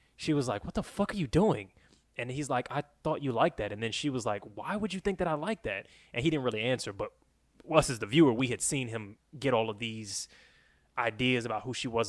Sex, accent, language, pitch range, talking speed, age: male, American, English, 110-140 Hz, 265 wpm, 20-39